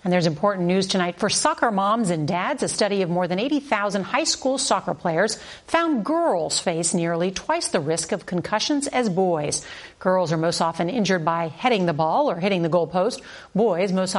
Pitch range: 170-225 Hz